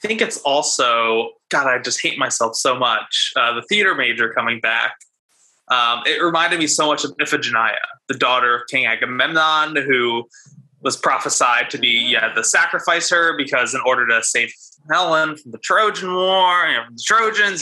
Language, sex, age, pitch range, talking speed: English, male, 20-39, 125-165 Hz, 185 wpm